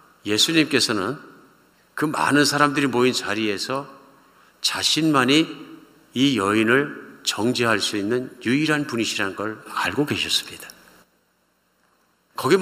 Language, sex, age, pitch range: Korean, male, 50-69, 115-170 Hz